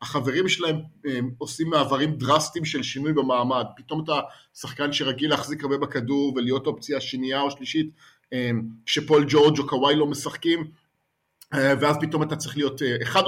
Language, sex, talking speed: English, male, 150 wpm